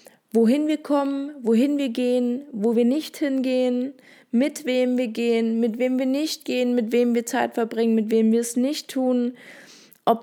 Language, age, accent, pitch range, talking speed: German, 20-39, German, 210-255 Hz, 180 wpm